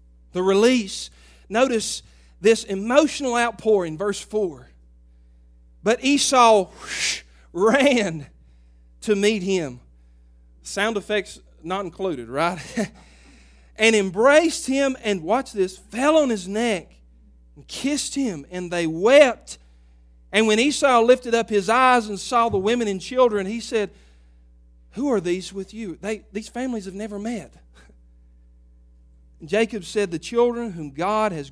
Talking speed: 135 wpm